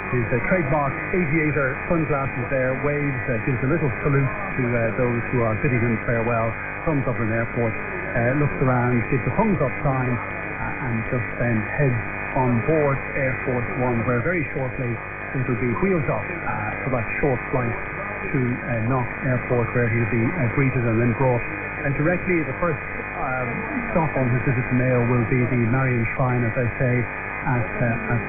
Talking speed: 195 wpm